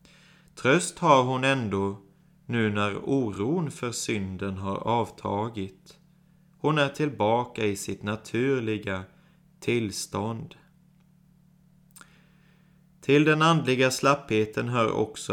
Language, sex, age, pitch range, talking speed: Swedish, male, 30-49, 110-170 Hz, 95 wpm